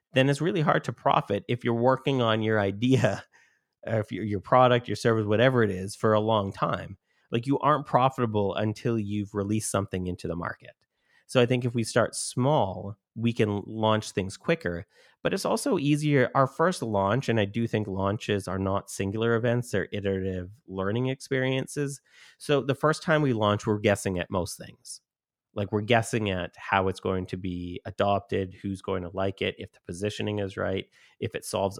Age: 30-49